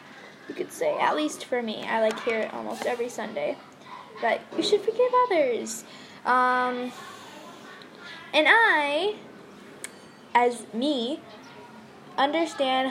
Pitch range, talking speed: 220-255 Hz, 110 wpm